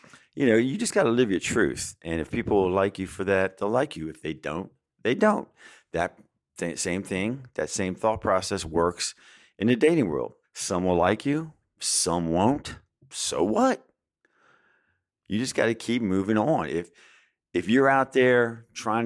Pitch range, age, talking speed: 95-130 Hz, 50-69, 185 wpm